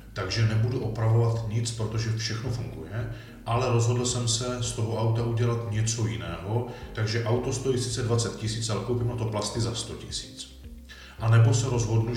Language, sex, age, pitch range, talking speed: Czech, male, 40-59, 110-115 Hz, 175 wpm